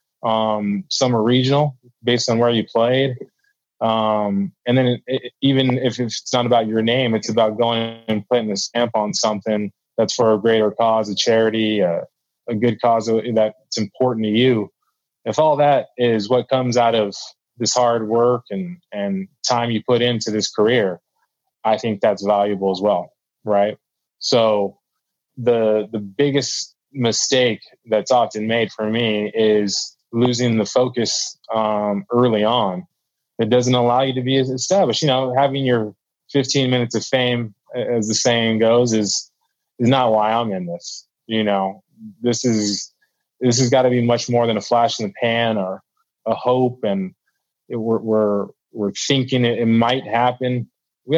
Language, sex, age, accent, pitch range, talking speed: English, male, 20-39, American, 110-130 Hz, 175 wpm